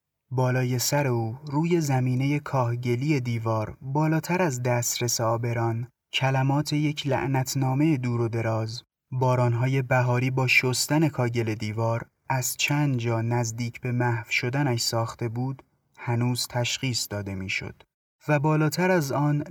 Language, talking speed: Persian, 130 wpm